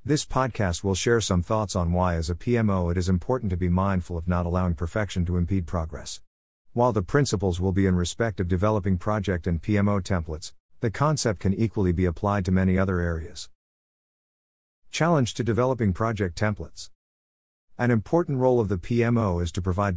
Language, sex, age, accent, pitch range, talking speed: English, male, 50-69, American, 85-115 Hz, 185 wpm